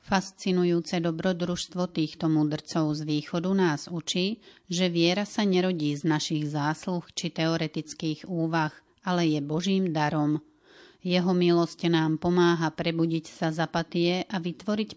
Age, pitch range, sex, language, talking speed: 30-49, 155-180 Hz, female, Slovak, 125 wpm